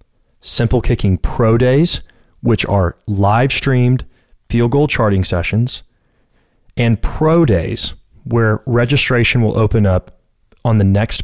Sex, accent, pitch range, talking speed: male, American, 95-125 Hz, 125 wpm